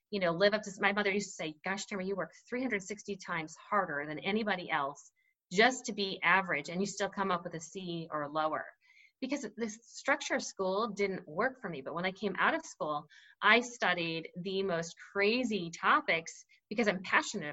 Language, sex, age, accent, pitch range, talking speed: English, female, 30-49, American, 175-240 Hz, 205 wpm